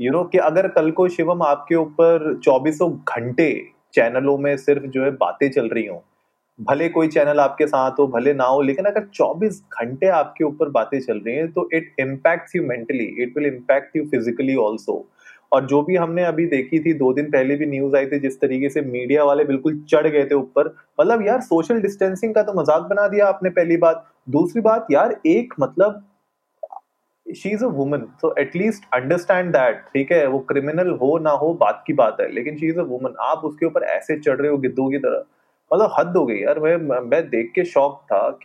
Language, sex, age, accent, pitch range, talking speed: Hindi, male, 30-49, native, 140-185 Hz, 140 wpm